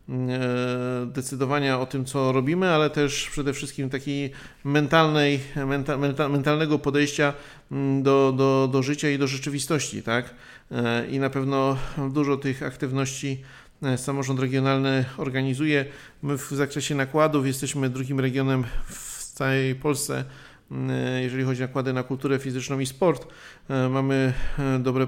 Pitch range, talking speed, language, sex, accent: 130-140 Hz, 120 wpm, Polish, male, native